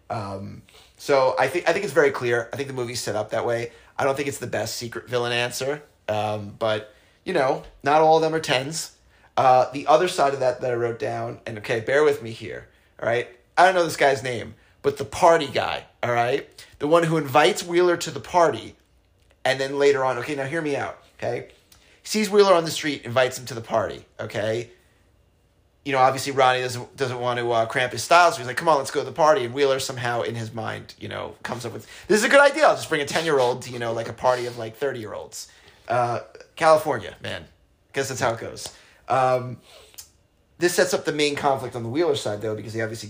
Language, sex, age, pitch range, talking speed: English, male, 30-49, 110-145 Hz, 240 wpm